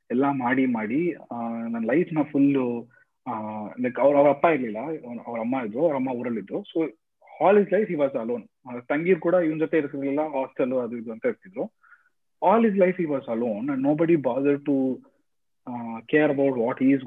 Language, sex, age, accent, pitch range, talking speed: Kannada, male, 30-49, native, 130-185 Hz, 90 wpm